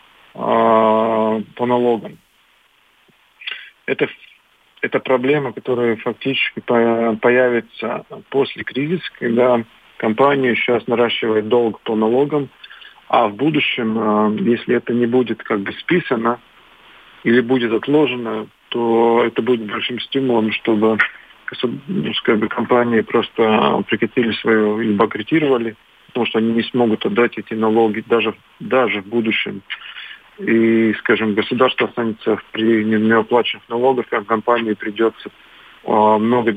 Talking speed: 110 wpm